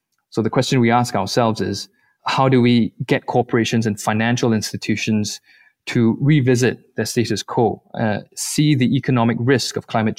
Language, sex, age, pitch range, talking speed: English, male, 20-39, 110-125 Hz, 160 wpm